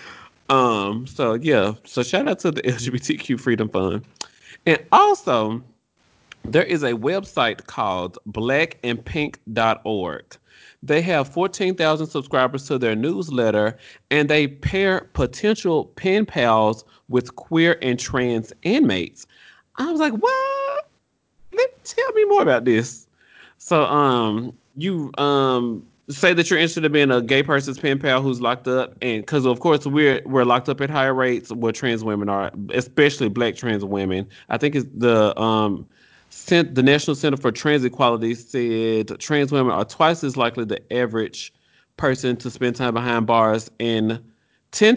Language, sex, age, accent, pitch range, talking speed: English, male, 30-49, American, 115-150 Hz, 150 wpm